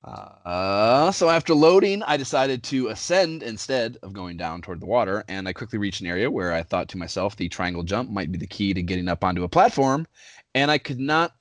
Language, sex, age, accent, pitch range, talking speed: English, male, 30-49, American, 95-125 Hz, 225 wpm